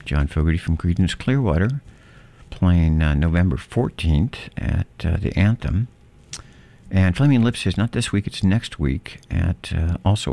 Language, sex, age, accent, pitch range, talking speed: English, male, 60-79, American, 80-100 Hz, 150 wpm